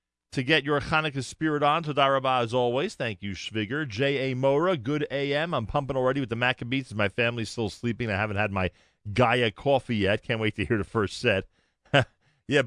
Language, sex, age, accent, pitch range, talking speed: English, male, 40-59, American, 95-125 Hz, 200 wpm